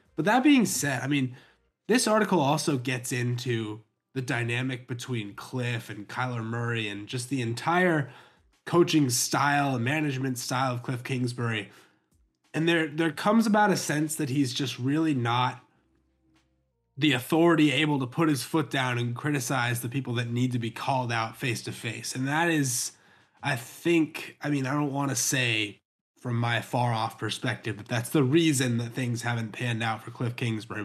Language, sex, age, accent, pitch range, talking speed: English, male, 20-39, American, 120-150 Hz, 180 wpm